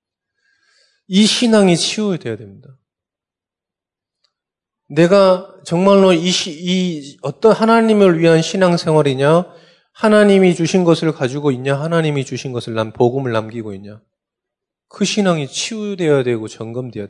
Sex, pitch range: male, 125-195 Hz